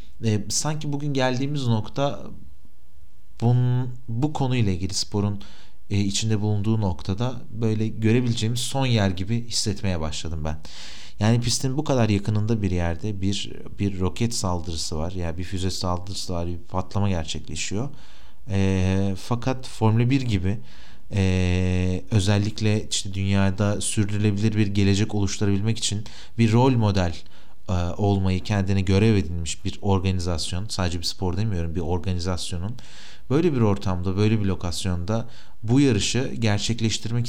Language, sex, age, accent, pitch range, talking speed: Turkish, male, 40-59, native, 90-115 Hz, 130 wpm